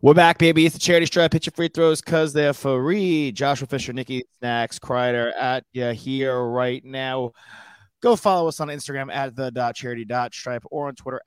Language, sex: English, male